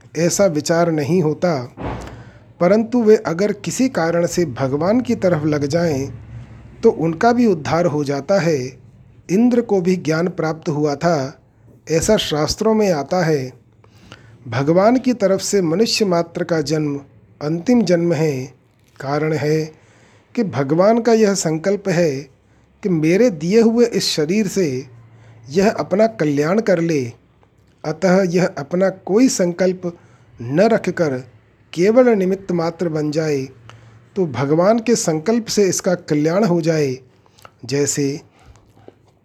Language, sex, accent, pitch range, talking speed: Hindi, male, native, 135-195 Hz, 135 wpm